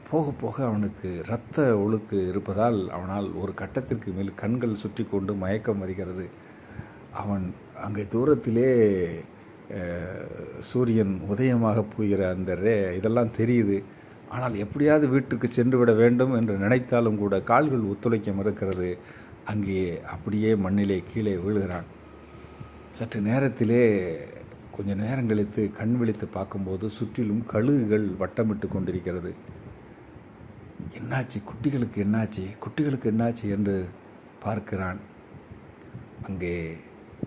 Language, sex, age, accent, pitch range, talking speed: Tamil, male, 50-69, native, 95-115 Hz, 95 wpm